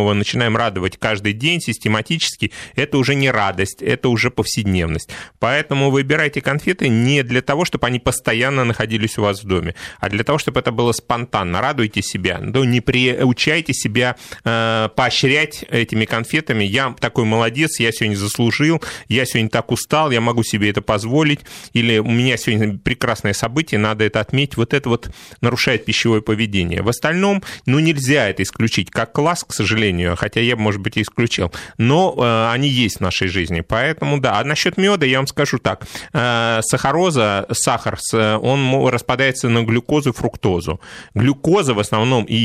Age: 30-49